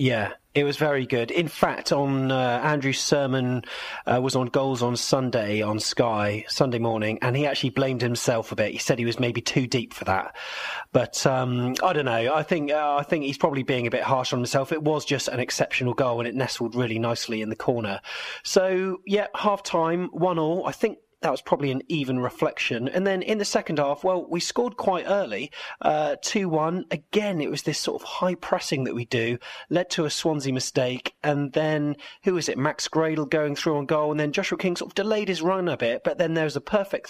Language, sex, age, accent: English, male, 30-49, British